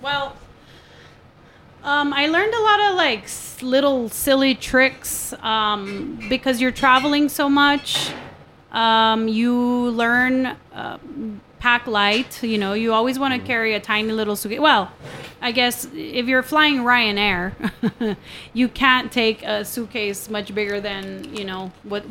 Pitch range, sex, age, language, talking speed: 215-270 Hz, female, 30-49, English, 140 wpm